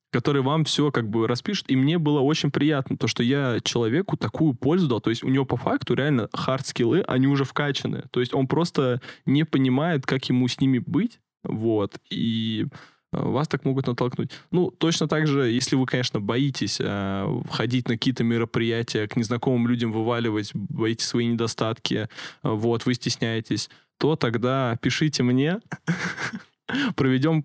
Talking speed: 160 wpm